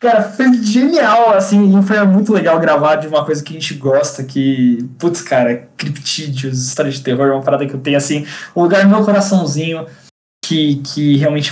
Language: Portuguese